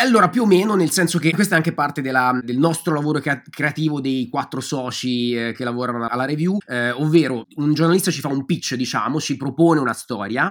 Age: 30-49